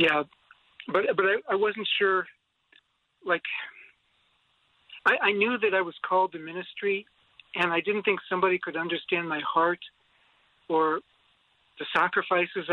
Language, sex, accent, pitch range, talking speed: English, male, American, 170-215 Hz, 135 wpm